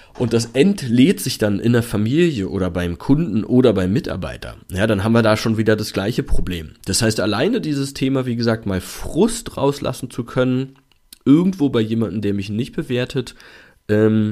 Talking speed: 185 wpm